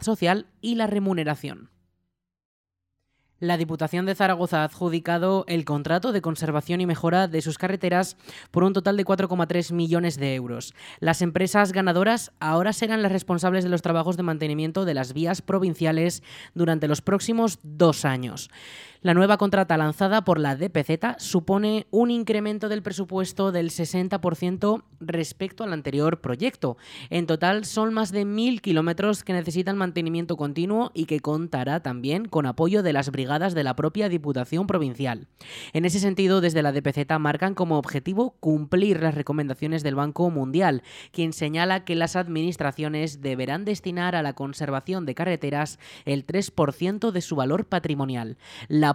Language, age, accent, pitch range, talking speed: Spanish, 20-39, Spanish, 150-190 Hz, 155 wpm